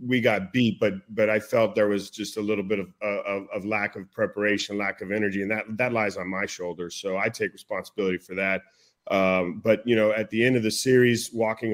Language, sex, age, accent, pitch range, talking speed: English, male, 40-59, American, 100-115 Hz, 235 wpm